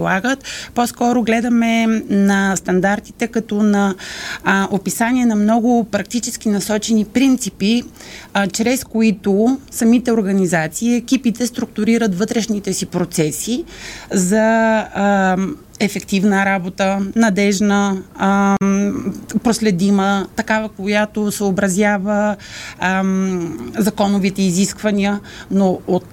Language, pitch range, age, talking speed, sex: Bulgarian, 195-230 Hz, 30-49, 85 wpm, female